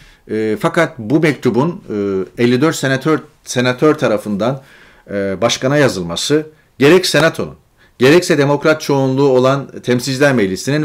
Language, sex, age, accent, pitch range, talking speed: Turkish, male, 40-59, native, 110-150 Hz, 95 wpm